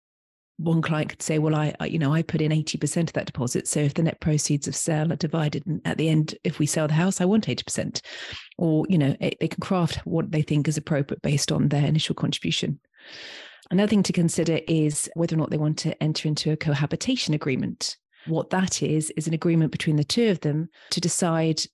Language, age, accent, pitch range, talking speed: English, 40-59, British, 150-170 Hz, 230 wpm